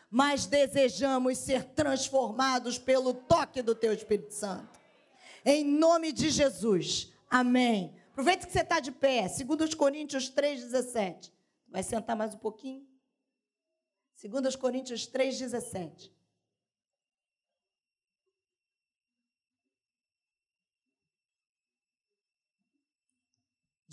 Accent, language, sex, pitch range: Brazilian, Portuguese, female, 205-280 Hz